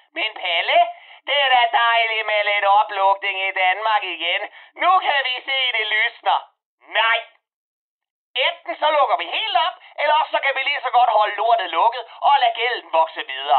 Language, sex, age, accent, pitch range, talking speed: Danish, male, 30-49, native, 215-345 Hz, 175 wpm